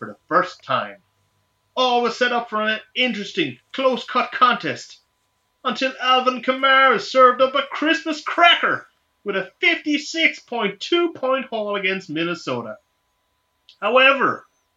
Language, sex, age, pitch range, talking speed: English, male, 30-49, 195-265 Hz, 120 wpm